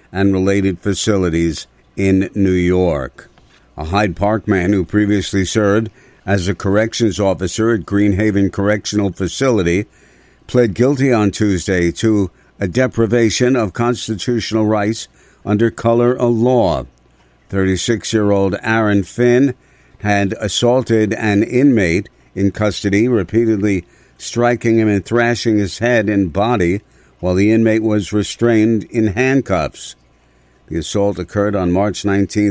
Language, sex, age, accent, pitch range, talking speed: English, male, 60-79, American, 95-115 Hz, 120 wpm